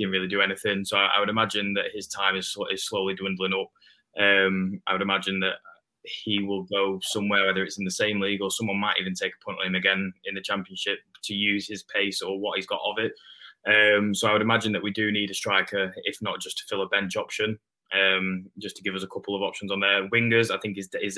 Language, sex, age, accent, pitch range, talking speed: English, male, 20-39, British, 95-105 Hz, 250 wpm